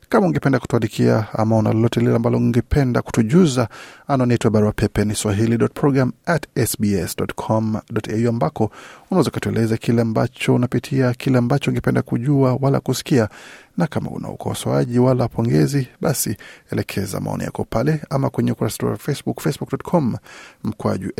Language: Swahili